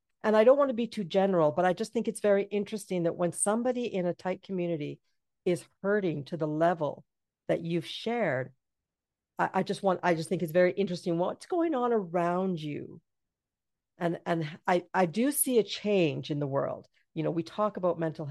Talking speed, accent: 205 wpm, American